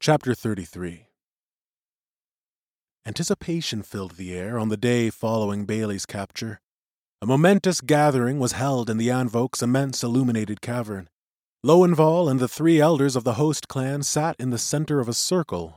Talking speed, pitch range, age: 150 wpm, 110-150 Hz, 30-49